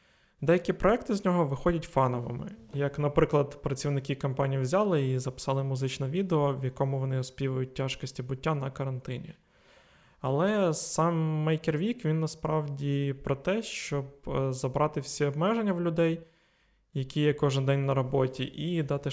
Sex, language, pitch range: male, Ukrainian, 135-160 Hz